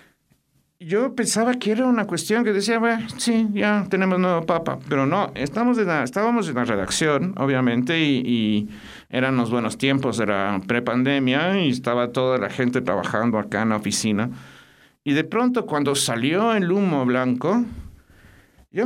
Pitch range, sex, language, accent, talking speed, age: 130-215 Hz, male, Spanish, Mexican, 165 wpm, 50-69